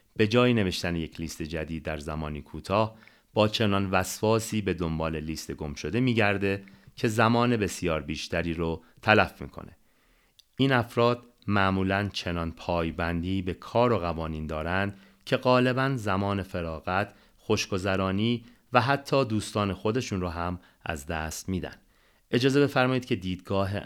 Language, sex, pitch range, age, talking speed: Persian, male, 85-120 Hz, 30-49, 135 wpm